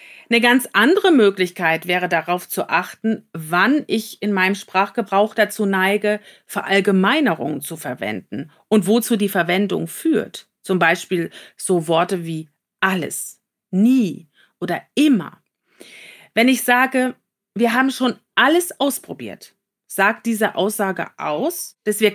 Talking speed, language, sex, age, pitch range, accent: 125 wpm, German, female, 40-59, 185-235 Hz, German